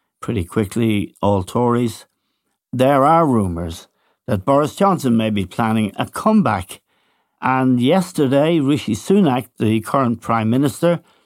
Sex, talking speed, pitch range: male, 125 wpm, 110-140 Hz